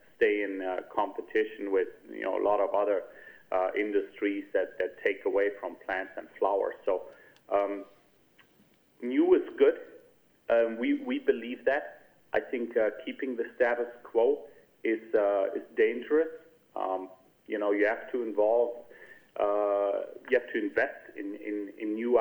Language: English